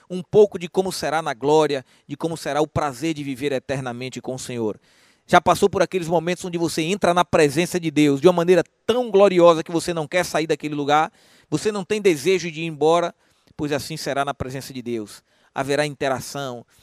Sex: male